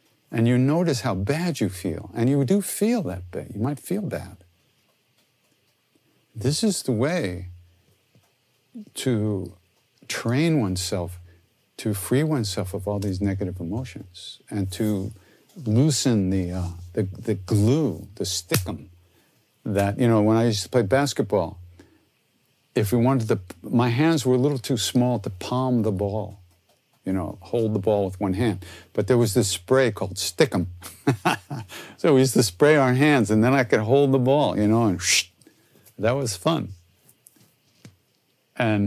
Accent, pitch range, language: American, 95-130 Hz, English